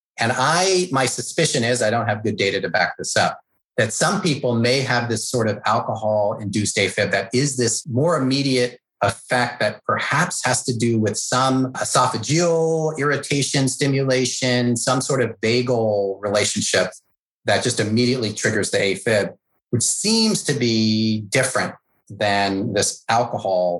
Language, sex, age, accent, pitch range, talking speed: English, male, 30-49, American, 105-130 Hz, 150 wpm